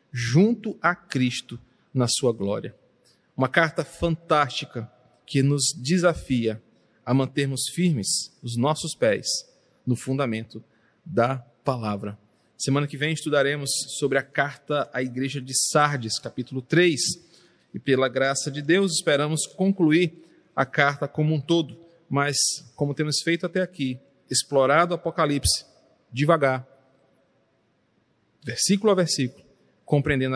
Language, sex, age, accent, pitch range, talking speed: Portuguese, male, 40-59, Brazilian, 125-155 Hz, 120 wpm